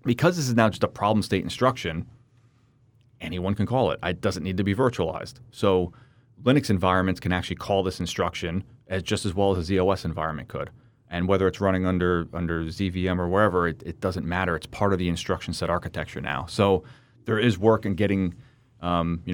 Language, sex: English, male